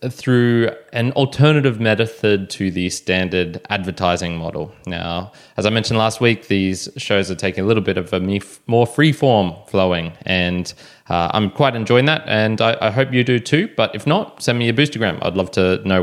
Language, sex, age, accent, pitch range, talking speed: English, male, 20-39, Australian, 95-130 Hz, 190 wpm